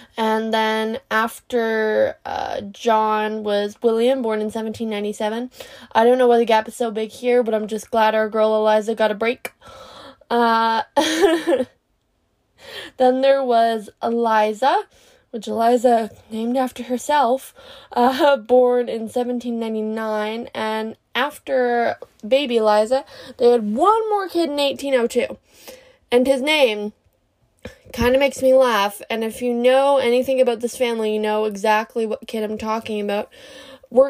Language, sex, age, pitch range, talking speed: English, female, 10-29, 220-265 Hz, 140 wpm